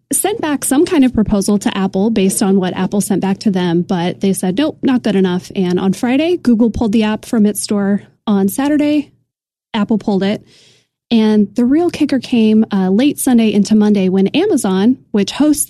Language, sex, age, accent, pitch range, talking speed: English, female, 20-39, American, 200-260 Hz, 200 wpm